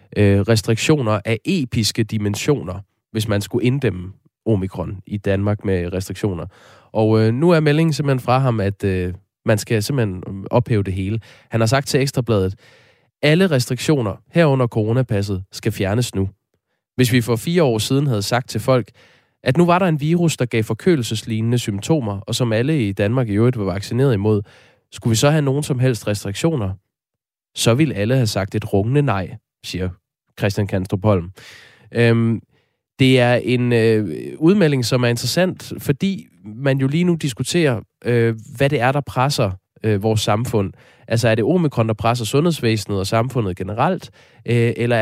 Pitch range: 105-135 Hz